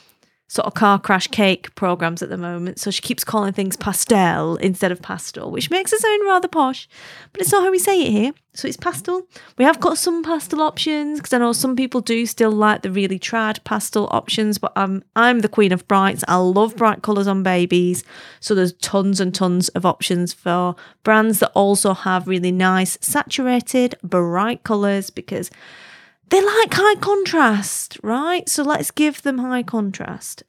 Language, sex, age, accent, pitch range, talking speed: English, female, 30-49, British, 185-280 Hz, 190 wpm